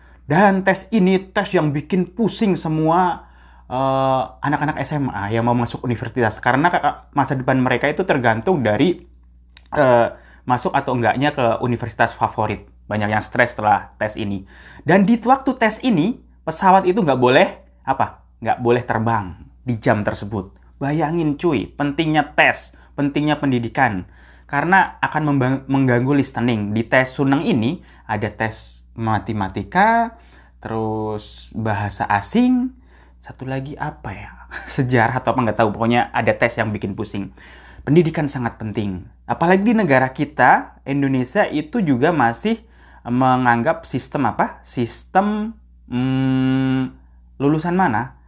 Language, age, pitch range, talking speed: Indonesian, 20-39, 110-150 Hz, 130 wpm